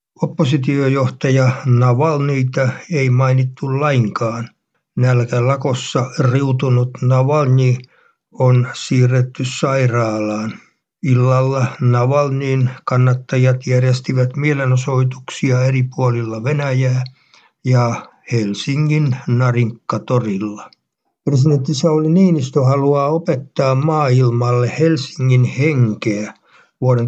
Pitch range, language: 125-140 Hz, Finnish